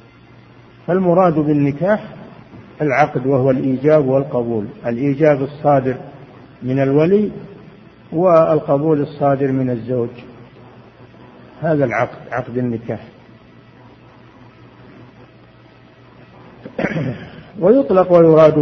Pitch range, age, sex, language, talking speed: 130-165 Hz, 50-69, male, Arabic, 65 wpm